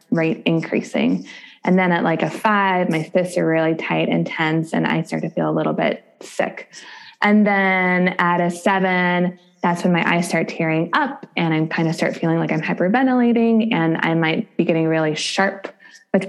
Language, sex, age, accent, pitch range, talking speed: English, female, 20-39, American, 165-210 Hz, 195 wpm